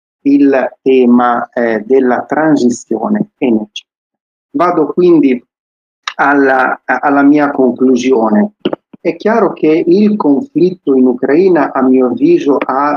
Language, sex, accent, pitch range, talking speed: Italian, male, native, 125-165 Hz, 105 wpm